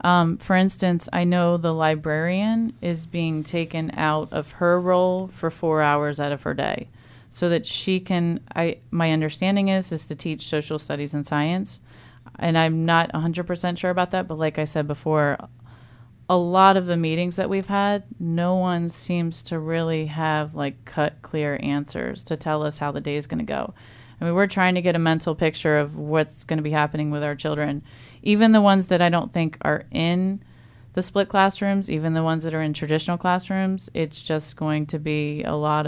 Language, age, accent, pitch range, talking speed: English, 30-49, American, 150-175 Hz, 200 wpm